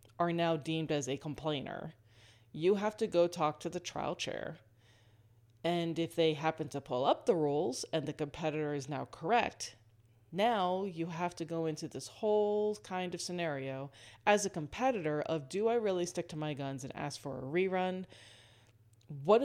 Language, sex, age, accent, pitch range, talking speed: English, female, 30-49, American, 135-185 Hz, 180 wpm